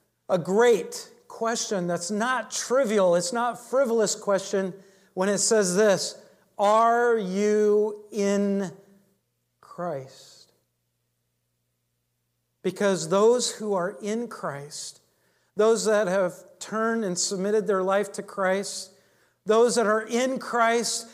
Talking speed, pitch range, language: 110 wpm, 180-230 Hz, English